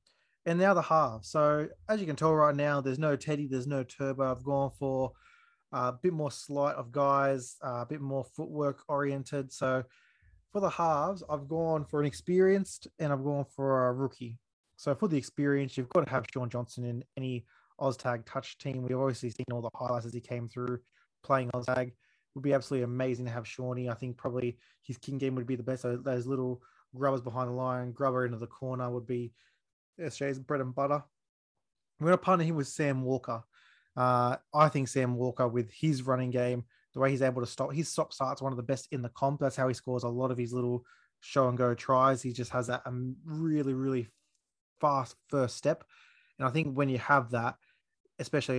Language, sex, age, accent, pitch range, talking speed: English, male, 20-39, Australian, 125-140 Hz, 210 wpm